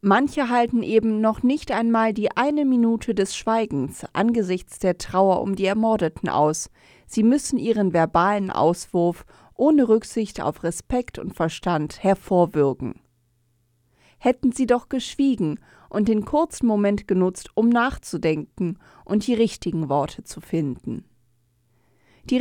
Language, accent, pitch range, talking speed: German, German, 170-230 Hz, 130 wpm